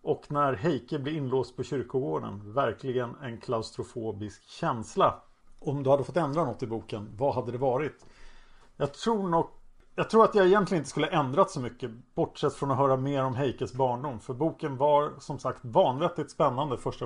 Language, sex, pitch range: Swedish, male, 130-160 Hz